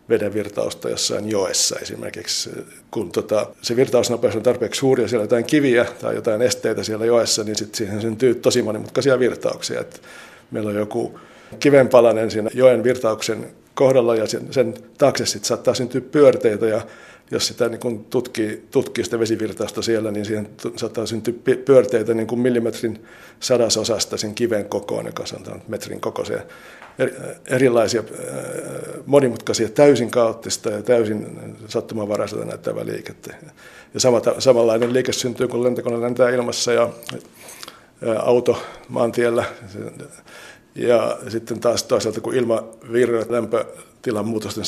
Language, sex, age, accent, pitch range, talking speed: Finnish, male, 60-79, native, 110-125 Hz, 135 wpm